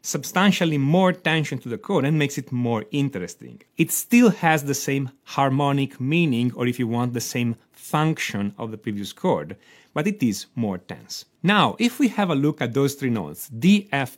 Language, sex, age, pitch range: Chinese, male, 40-59, 120-180 Hz